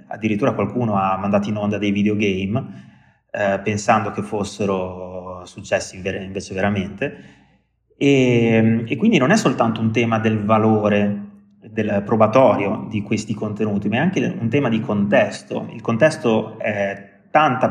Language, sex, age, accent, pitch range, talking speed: Italian, male, 30-49, native, 105-120 Hz, 140 wpm